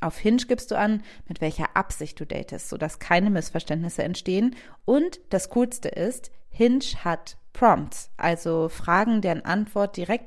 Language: German